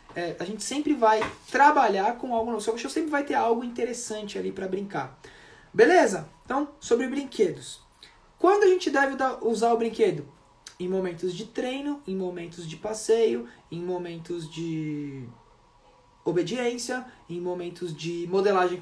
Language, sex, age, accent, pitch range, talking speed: Portuguese, male, 20-39, Brazilian, 145-215 Hz, 145 wpm